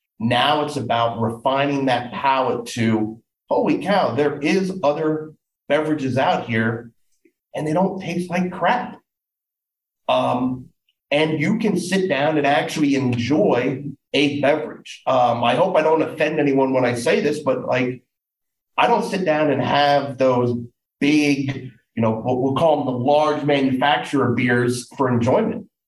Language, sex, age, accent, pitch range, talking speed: English, male, 40-59, American, 125-155 Hz, 150 wpm